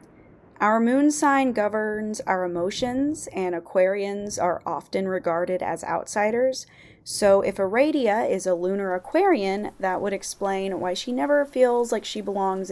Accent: American